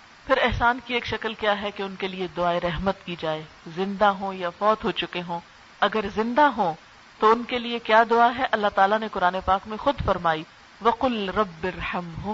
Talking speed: 215 wpm